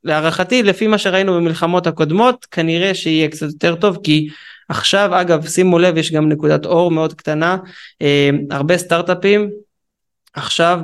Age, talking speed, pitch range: 20-39, 145 wpm, 150-175 Hz